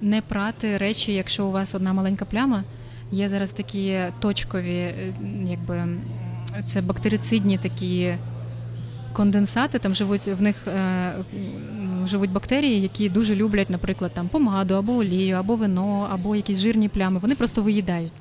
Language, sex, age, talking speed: Ukrainian, female, 20-39, 135 wpm